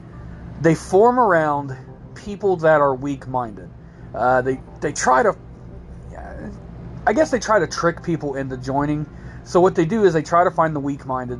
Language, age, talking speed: English, 40-59, 170 wpm